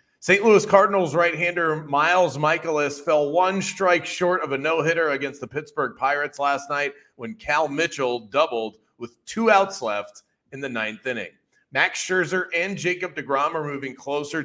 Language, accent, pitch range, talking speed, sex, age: English, American, 120-165 Hz, 160 wpm, male, 30-49